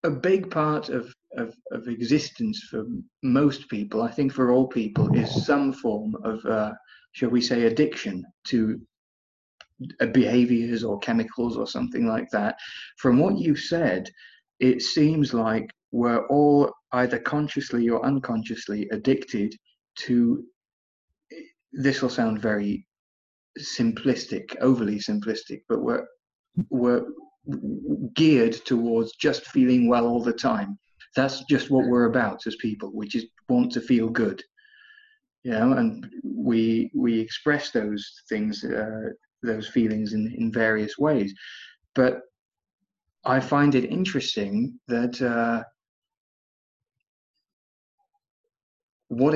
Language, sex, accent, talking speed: English, male, British, 125 wpm